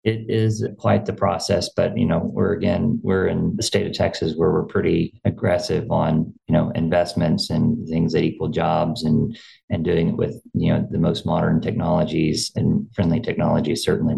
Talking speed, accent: 185 wpm, American